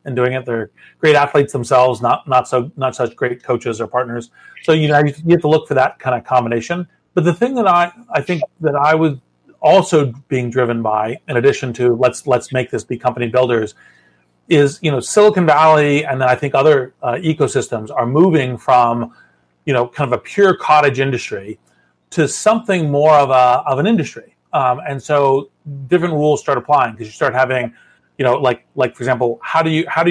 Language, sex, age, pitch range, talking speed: English, male, 30-49, 125-155 Hz, 210 wpm